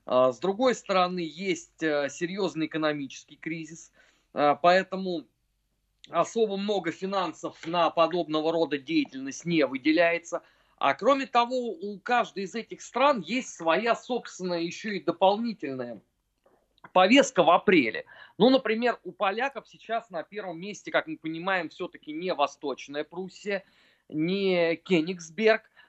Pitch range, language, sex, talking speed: 155-205 Hz, Russian, male, 120 wpm